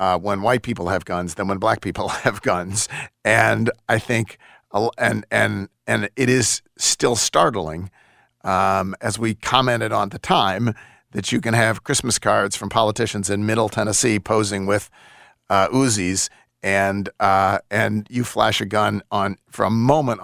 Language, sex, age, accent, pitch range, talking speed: English, male, 50-69, American, 100-120 Hz, 165 wpm